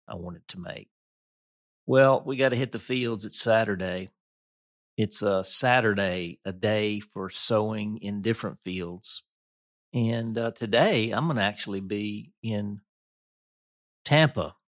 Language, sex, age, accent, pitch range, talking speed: English, male, 50-69, American, 95-115 Hz, 135 wpm